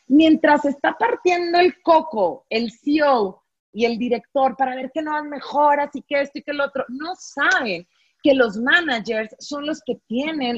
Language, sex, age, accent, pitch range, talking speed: Spanish, female, 30-49, Mexican, 240-315 Hz, 180 wpm